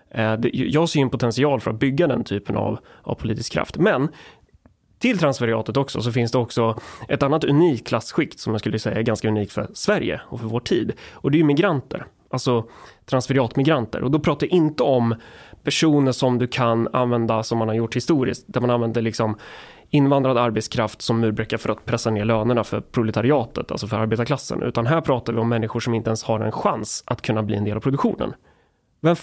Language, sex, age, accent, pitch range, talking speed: Swedish, male, 20-39, native, 110-135 Hz, 205 wpm